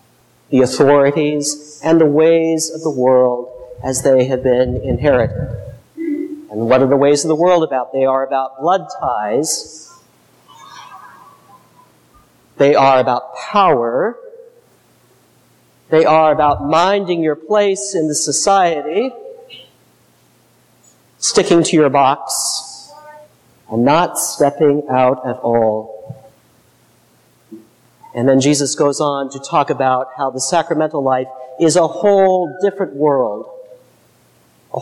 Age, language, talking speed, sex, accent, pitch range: 40-59, English, 115 wpm, male, American, 130-190 Hz